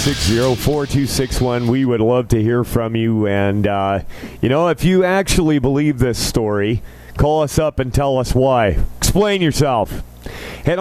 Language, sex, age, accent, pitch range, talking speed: English, male, 40-59, American, 115-145 Hz, 185 wpm